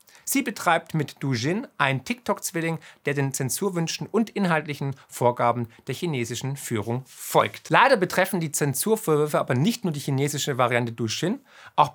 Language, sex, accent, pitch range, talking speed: German, male, German, 135-180 Hz, 140 wpm